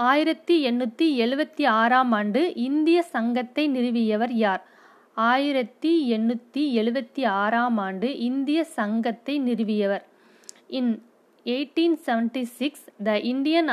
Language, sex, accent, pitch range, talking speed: Tamil, female, native, 230-295 Hz, 70 wpm